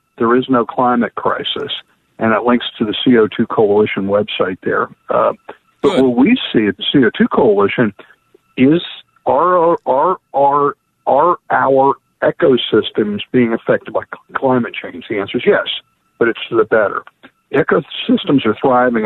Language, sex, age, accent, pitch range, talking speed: English, male, 50-69, American, 110-135 Hz, 150 wpm